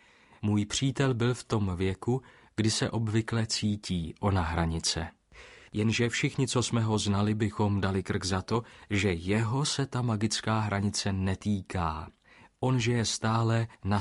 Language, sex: Slovak, male